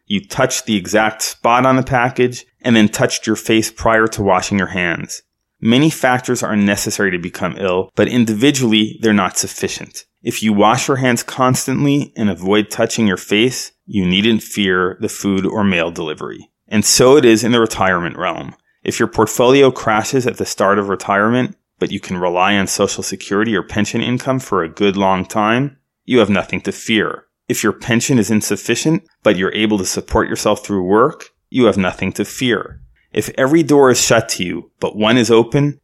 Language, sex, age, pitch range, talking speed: English, male, 30-49, 100-125 Hz, 195 wpm